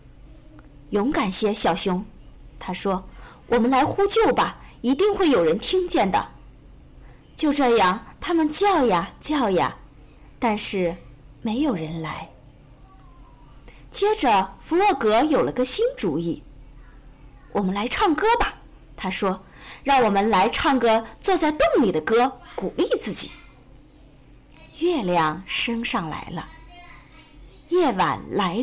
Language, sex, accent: Chinese, female, native